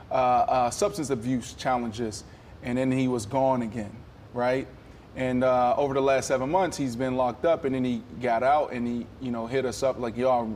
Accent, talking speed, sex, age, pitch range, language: American, 215 wpm, male, 20-39, 120-150 Hz, English